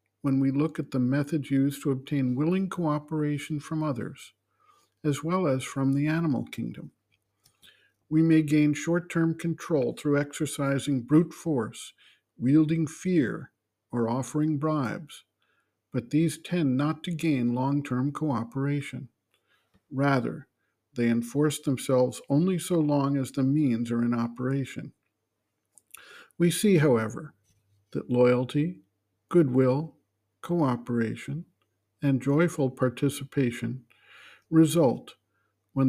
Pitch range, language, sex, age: 120-155 Hz, English, male, 50-69